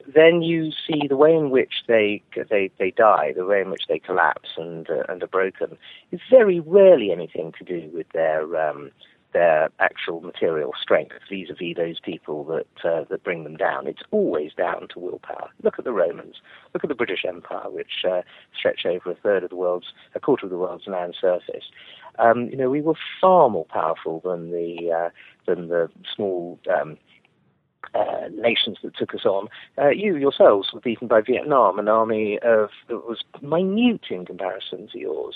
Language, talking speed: English, 190 wpm